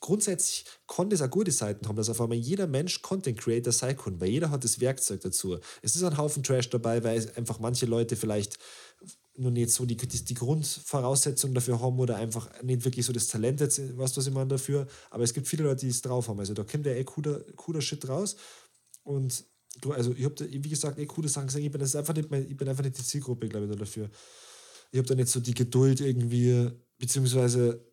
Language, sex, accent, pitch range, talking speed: German, male, German, 115-140 Hz, 235 wpm